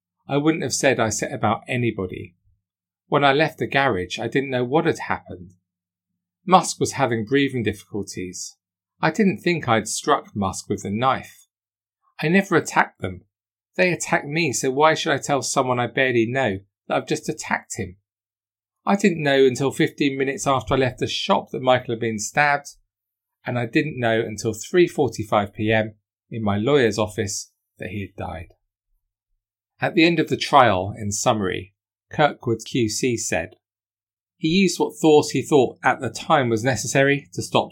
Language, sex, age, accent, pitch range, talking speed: English, male, 40-59, British, 100-130 Hz, 170 wpm